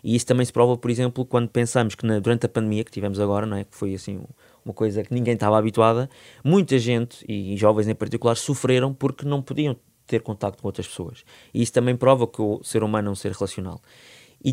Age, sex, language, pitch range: 20-39, male, Portuguese, 110-130 Hz